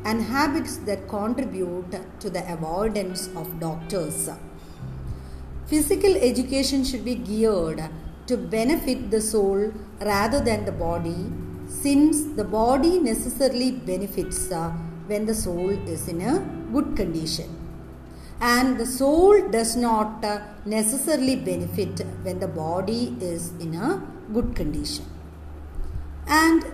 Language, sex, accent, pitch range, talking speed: English, female, Indian, 175-260 Hz, 115 wpm